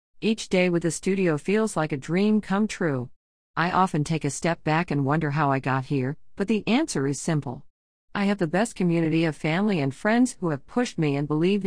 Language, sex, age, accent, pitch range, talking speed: English, female, 50-69, American, 145-190 Hz, 220 wpm